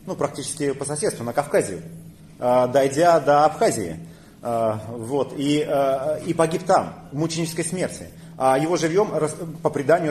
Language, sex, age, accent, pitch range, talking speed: Russian, male, 30-49, native, 140-175 Hz, 130 wpm